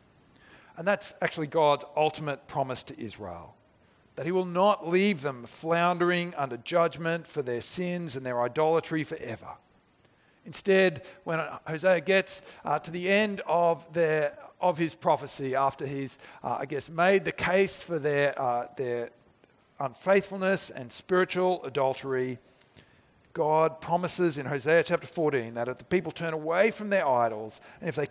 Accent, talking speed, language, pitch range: Australian, 150 wpm, English, 130-180 Hz